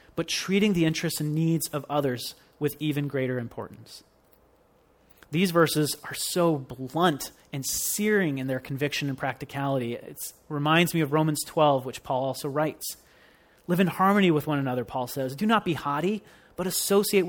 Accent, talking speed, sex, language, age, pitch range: American, 165 wpm, male, English, 30-49, 135-165 Hz